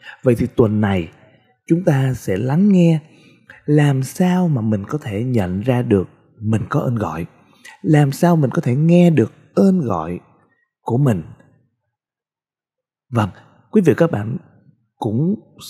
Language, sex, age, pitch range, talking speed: Vietnamese, male, 20-39, 105-145 Hz, 150 wpm